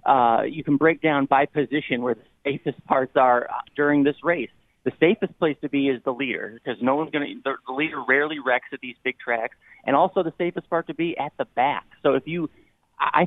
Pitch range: 130-160 Hz